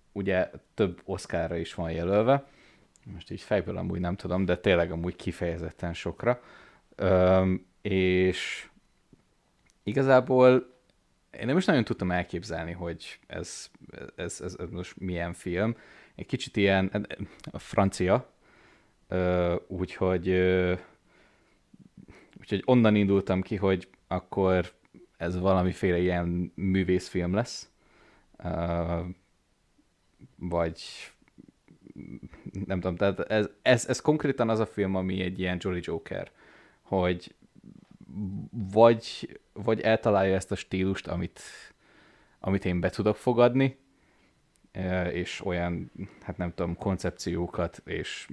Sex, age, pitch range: male, 20-39, 90-105 Hz